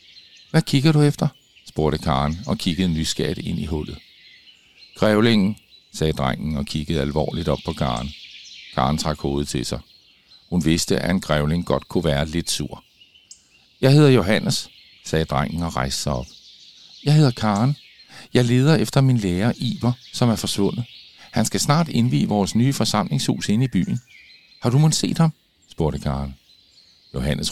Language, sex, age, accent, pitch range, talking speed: Danish, male, 50-69, native, 75-125 Hz, 165 wpm